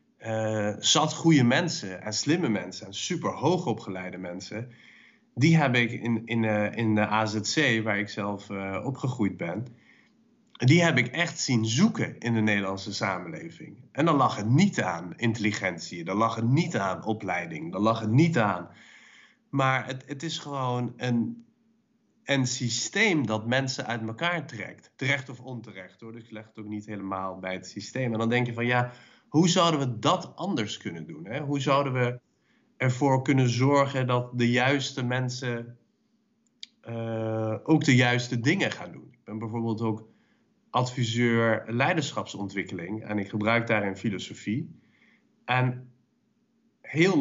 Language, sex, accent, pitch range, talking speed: Dutch, male, Dutch, 110-140 Hz, 160 wpm